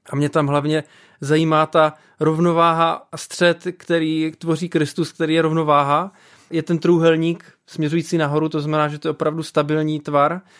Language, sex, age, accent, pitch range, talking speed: Czech, male, 20-39, native, 155-170 Hz, 160 wpm